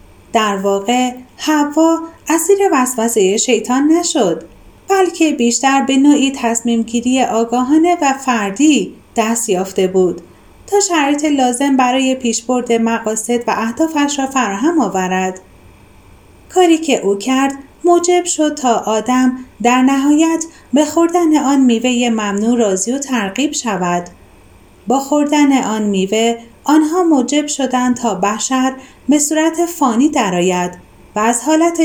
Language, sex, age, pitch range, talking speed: Persian, female, 30-49, 215-295 Hz, 120 wpm